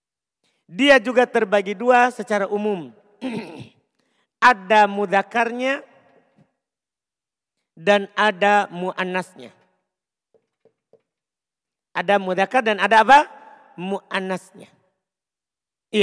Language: Indonesian